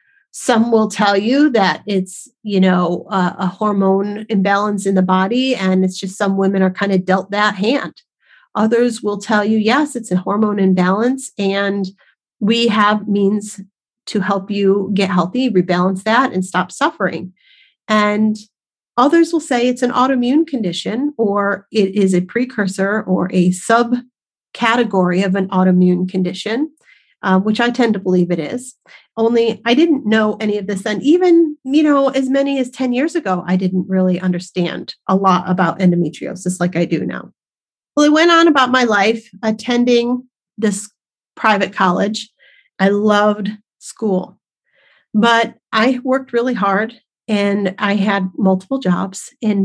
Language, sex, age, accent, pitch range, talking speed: English, female, 30-49, American, 190-245 Hz, 160 wpm